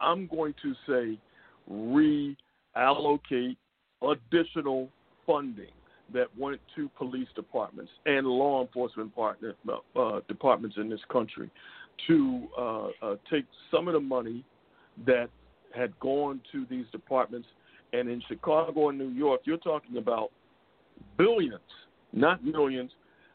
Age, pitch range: 50-69, 120-160 Hz